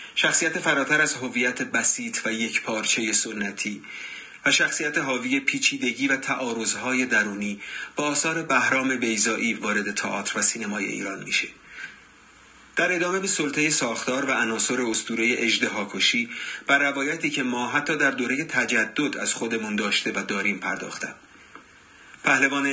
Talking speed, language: 130 wpm, Persian